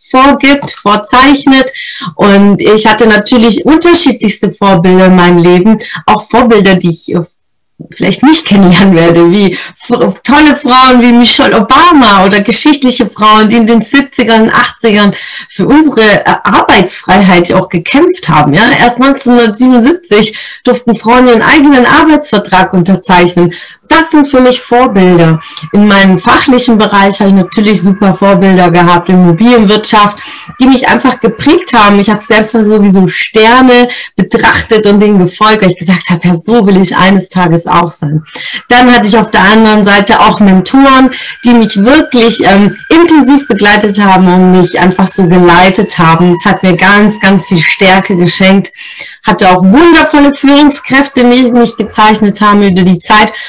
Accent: German